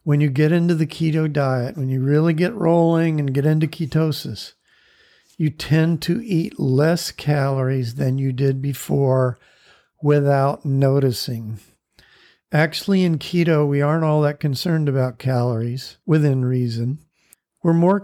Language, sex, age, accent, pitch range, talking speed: English, male, 50-69, American, 140-165 Hz, 140 wpm